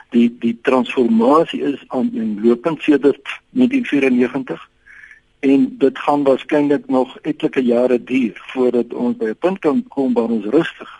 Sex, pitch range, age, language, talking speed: male, 120-160 Hz, 60-79, English, 155 wpm